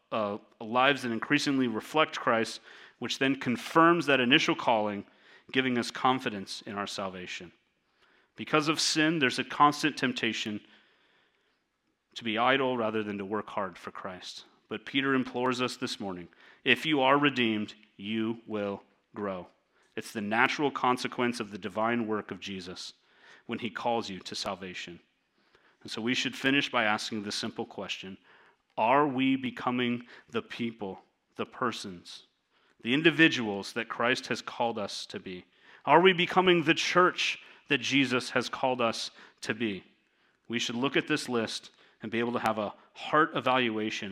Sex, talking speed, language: male, 160 wpm, English